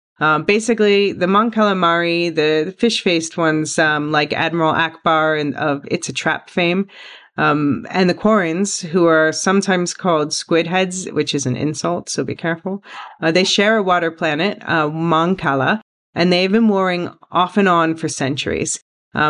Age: 40-59